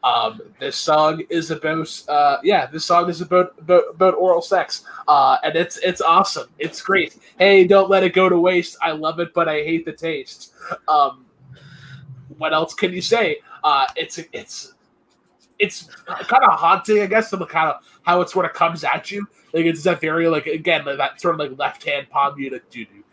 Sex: male